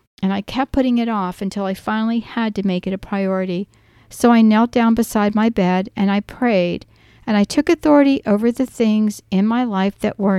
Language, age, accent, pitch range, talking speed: English, 60-79, American, 190-230 Hz, 215 wpm